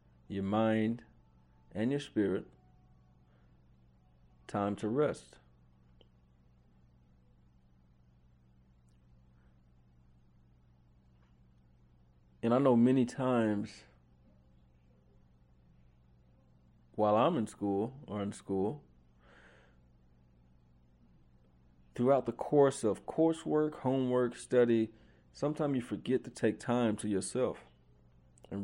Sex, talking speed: male, 75 wpm